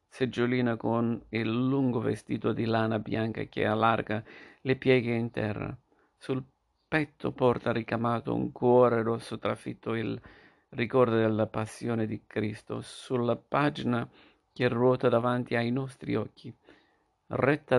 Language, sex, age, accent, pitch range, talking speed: Italian, male, 50-69, native, 105-125 Hz, 125 wpm